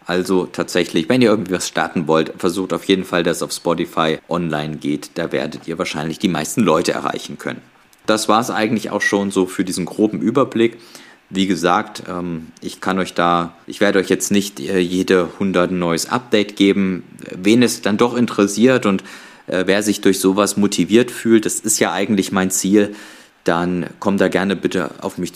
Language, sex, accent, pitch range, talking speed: German, male, German, 90-115 Hz, 185 wpm